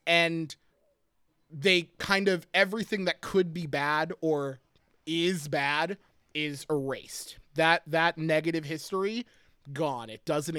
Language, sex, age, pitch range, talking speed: English, male, 20-39, 135-185 Hz, 120 wpm